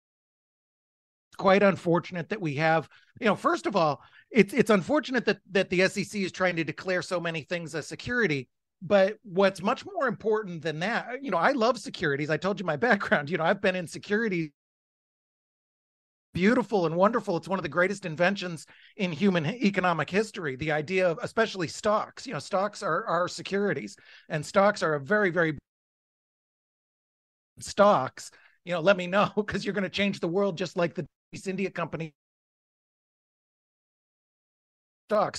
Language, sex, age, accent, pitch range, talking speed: English, male, 30-49, American, 175-210 Hz, 170 wpm